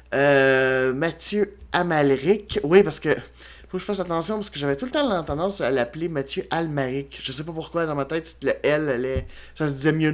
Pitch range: 130-175 Hz